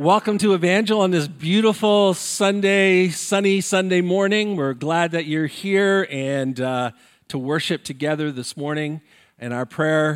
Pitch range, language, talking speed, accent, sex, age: 130-170 Hz, English, 150 wpm, American, male, 50-69